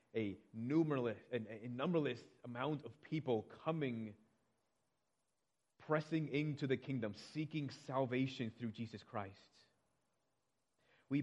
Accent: American